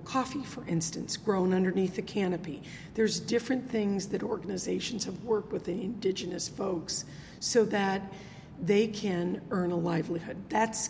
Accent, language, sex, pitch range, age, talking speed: American, English, female, 175-220 Hz, 40-59, 145 wpm